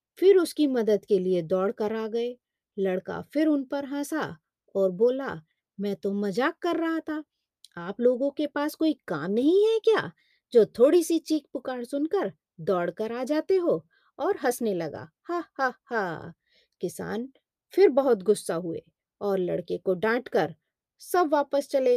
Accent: native